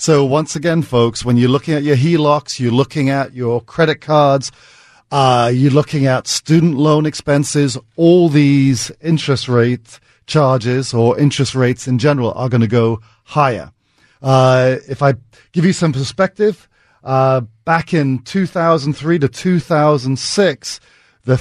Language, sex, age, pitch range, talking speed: English, male, 40-59, 120-150 Hz, 145 wpm